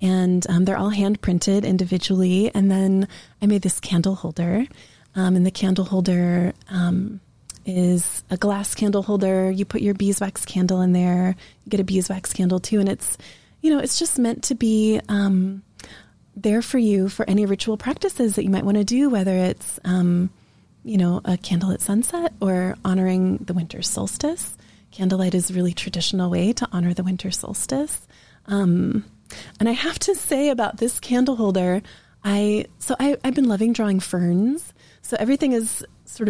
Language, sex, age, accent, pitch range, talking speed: English, female, 20-39, American, 185-230 Hz, 180 wpm